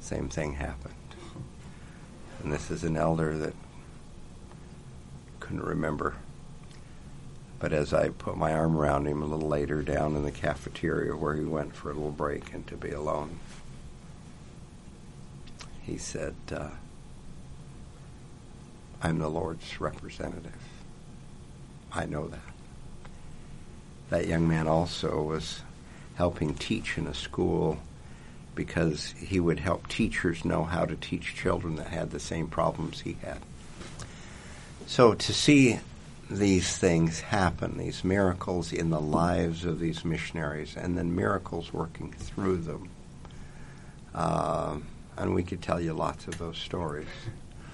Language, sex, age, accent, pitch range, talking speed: English, male, 60-79, American, 75-85 Hz, 130 wpm